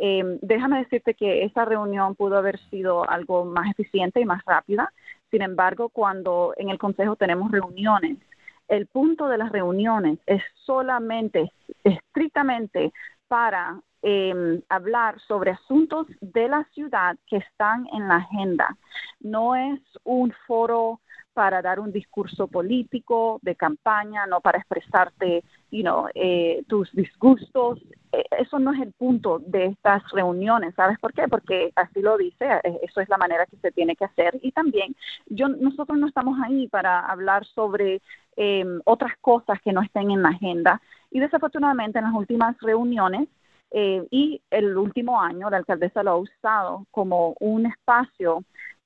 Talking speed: 155 wpm